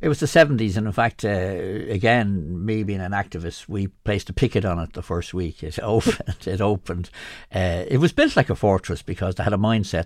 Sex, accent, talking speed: male, Irish, 225 wpm